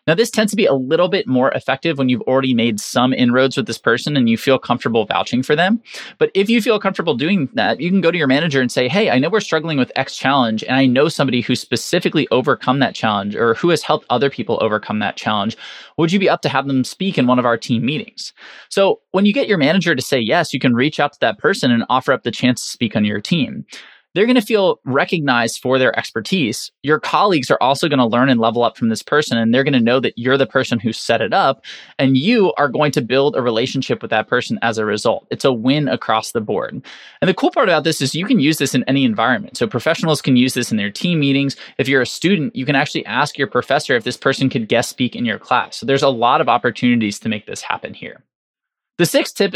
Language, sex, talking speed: English, male, 260 wpm